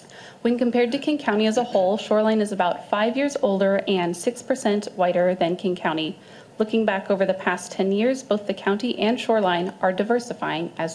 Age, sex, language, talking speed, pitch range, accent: 30-49, female, English, 190 wpm, 185-230 Hz, American